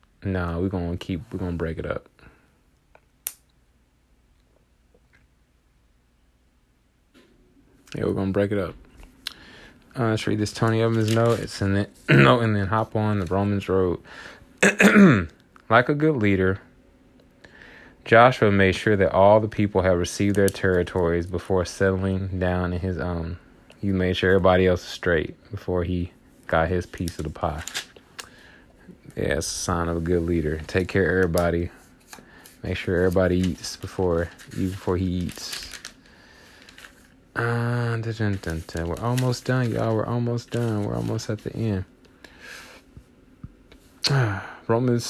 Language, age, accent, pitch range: English, 20-39, American, 85-105 Hz